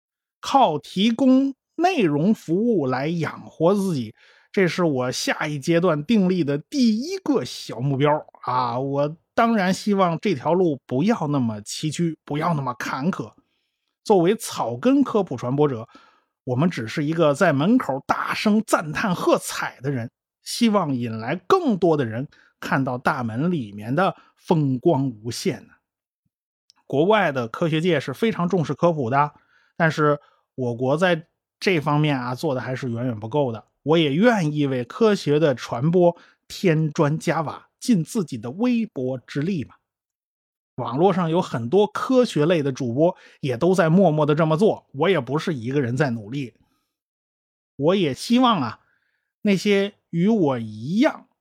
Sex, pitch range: male, 135-195 Hz